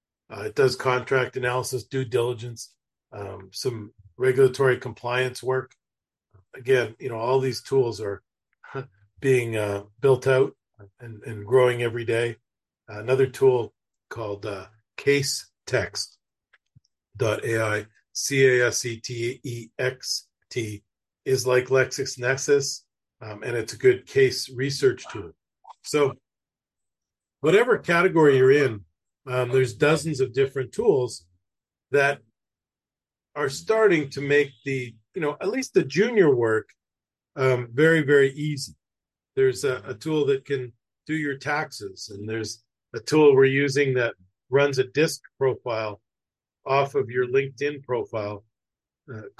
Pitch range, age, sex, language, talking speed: 115-140 Hz, 40-59, male, English, 130 wpm